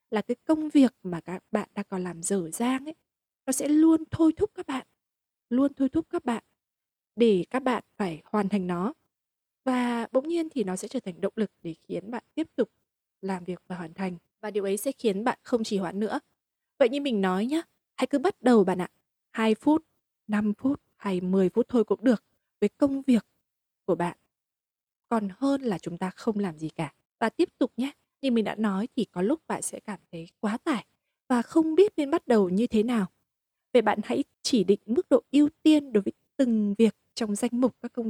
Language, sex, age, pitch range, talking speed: Vietnamese, female, 20-39, 200-270 Hz, 220 wpm